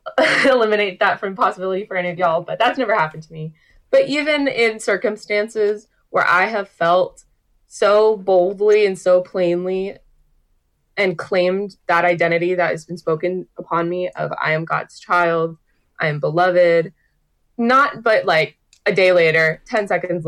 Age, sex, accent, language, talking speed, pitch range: 20-39, female, American, English, 155 wpm, 170-200 Hz